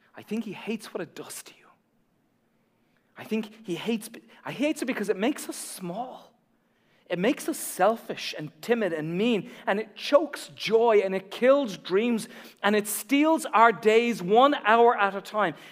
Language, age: English, 40-59